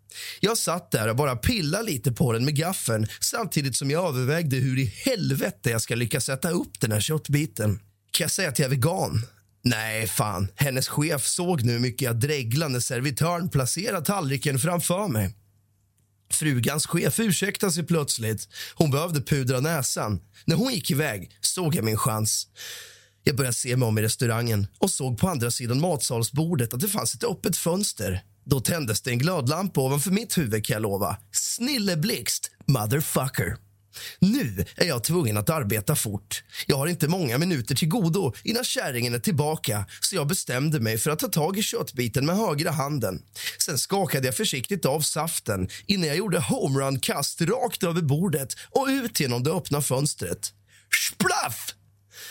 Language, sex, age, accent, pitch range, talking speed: Swedish, male, 30-49, native, 115-170 Hz, 170 wpm